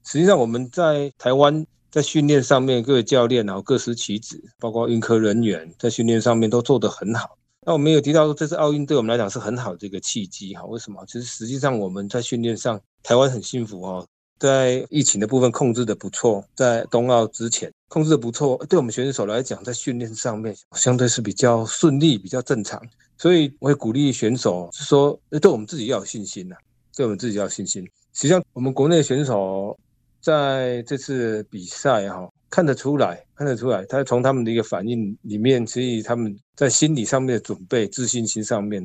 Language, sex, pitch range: Chinese, male, 110-135 Hz